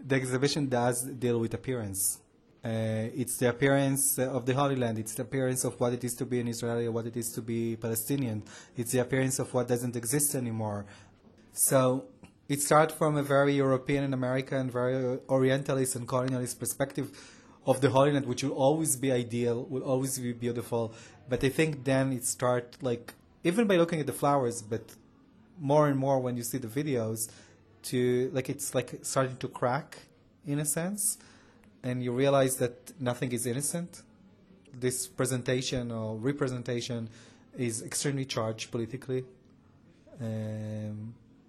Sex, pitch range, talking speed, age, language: male, 120-140 Hz, 165 wpm, 30-49, Czech